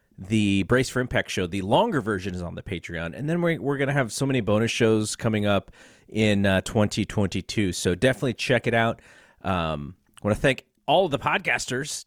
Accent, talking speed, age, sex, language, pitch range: American, 210 wpm, 30-49, male, English, 95-130 Hz